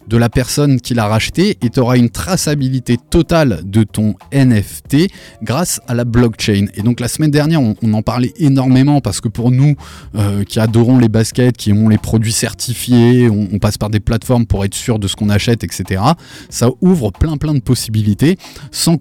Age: 20-39